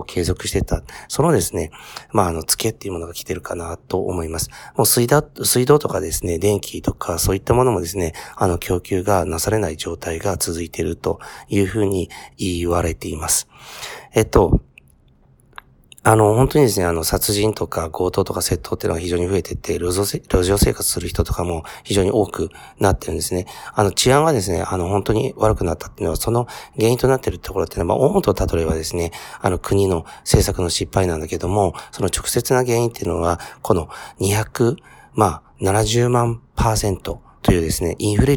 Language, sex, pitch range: Japanese, male, 85-115 Hz